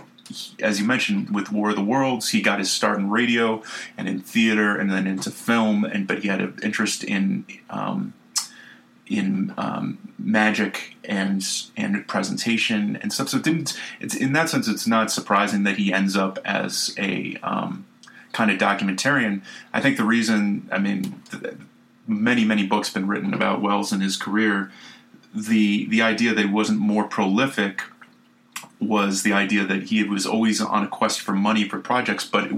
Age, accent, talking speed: 30-49, American, 180 wpm